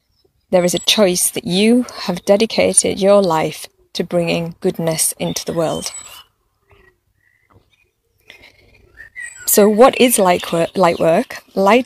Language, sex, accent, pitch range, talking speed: English, female, British, 175-240 Hz, 110 wpm